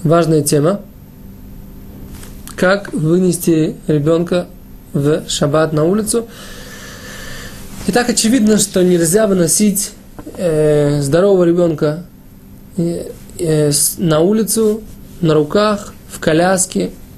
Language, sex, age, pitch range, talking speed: Russian, male, 20-39, 155-185 Hz, 85 wpm